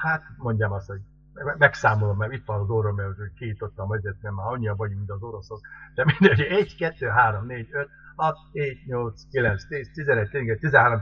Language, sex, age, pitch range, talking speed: Hungarian, male, 60-79, 110-140 Hz, 200 wpm